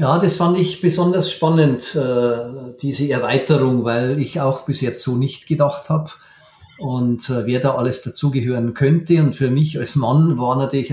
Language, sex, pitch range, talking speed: German, male, 125-150 Hz, 165 wpm